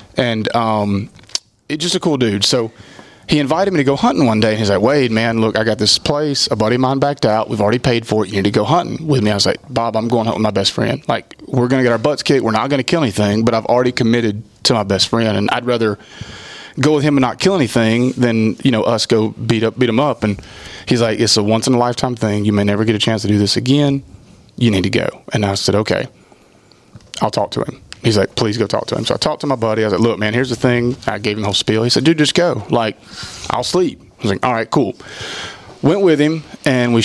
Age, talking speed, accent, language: 30-49, 280 wpm, American, English